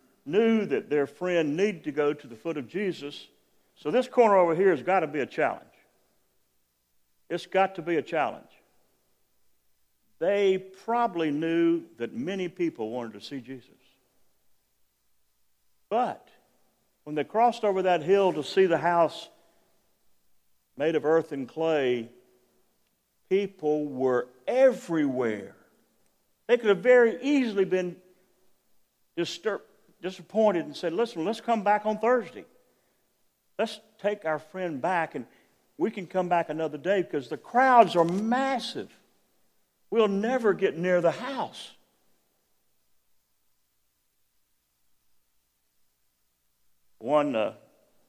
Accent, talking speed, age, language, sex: American, 120 wpm, 60-79, English, male